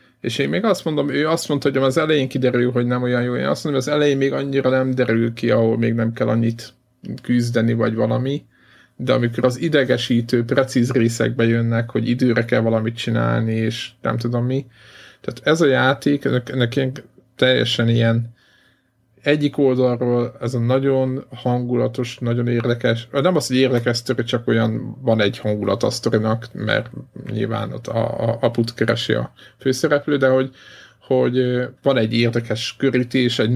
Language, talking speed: Hungarian, 170 wpm